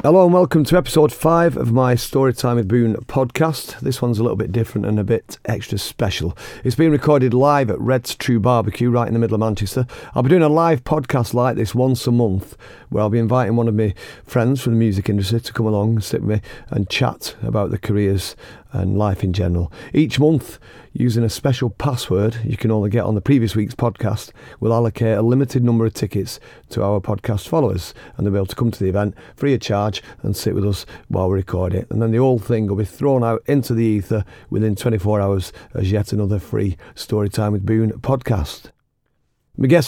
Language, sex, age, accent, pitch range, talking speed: English, male, 40-59, British, 105-125 Hz, 220 wpm